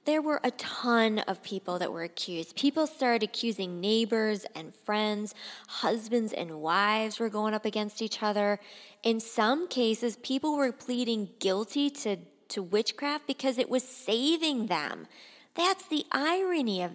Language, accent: English, American